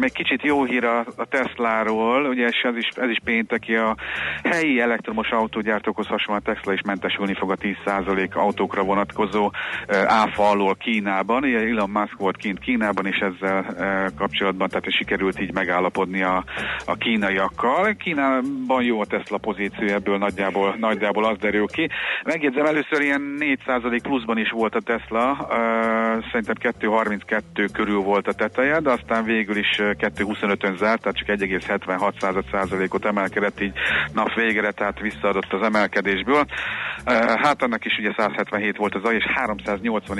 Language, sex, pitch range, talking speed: Hungarian, male, 100-120 Hz, 155 wpm